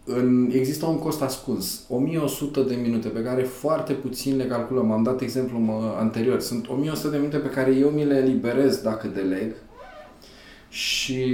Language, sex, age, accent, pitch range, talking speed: Romanian, male, 20-39, native, 115-140 Hz, 165 wpm